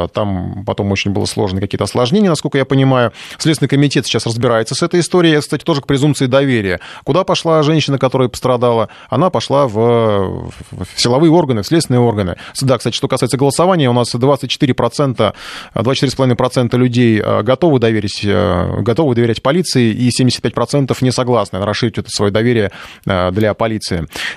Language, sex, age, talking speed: Russian, male, 20-39, 150 wpm